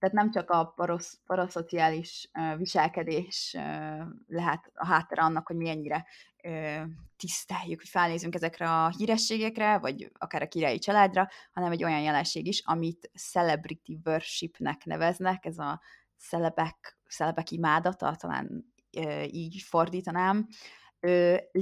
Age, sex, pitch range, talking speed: 20-39, female, 155-185 Hz, 125 wpm